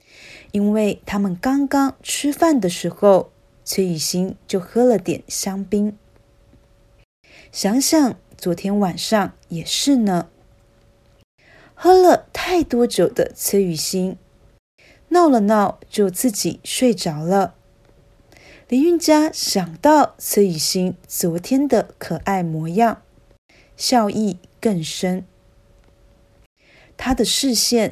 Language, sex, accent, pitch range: Chinese, female, native, 175-240 Hz